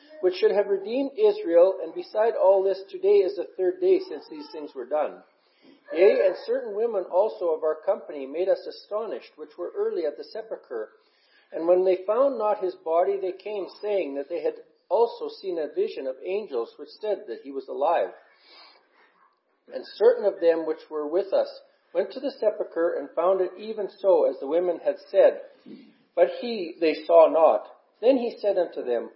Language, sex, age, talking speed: English, male, 50-69, 190 wpm